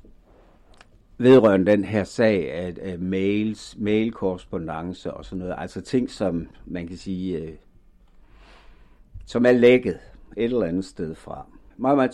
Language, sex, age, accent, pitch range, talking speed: Danish, male, 60-79, native, 90-110 Hz, 135 wpm